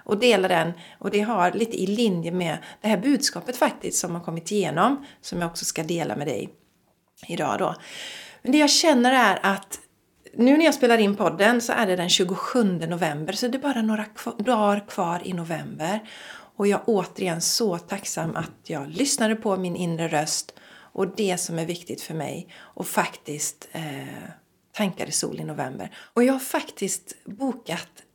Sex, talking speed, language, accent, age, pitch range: female, 190 wpm, Swedish, native, 40-59, 180-250 Hz